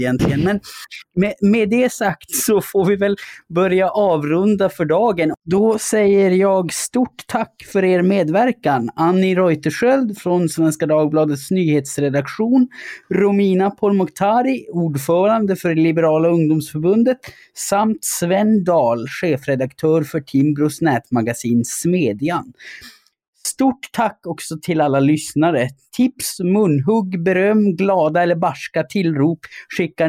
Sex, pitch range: male, 150-195 Hz